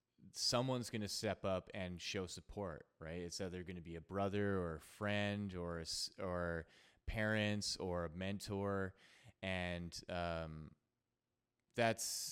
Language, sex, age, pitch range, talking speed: English, male, 20-39, 90-110 Hz, 135 wpm